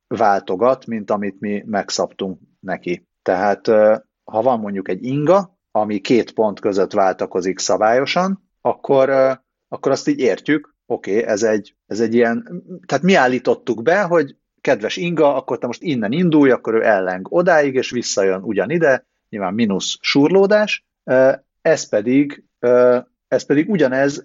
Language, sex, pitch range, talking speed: Hungarian, male, 105-145 Hz, 140 wpm